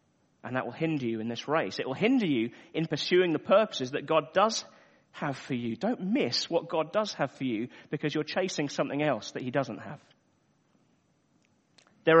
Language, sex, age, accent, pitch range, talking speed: English, male, 40-59, British, 130-165 Hz, 195 wpm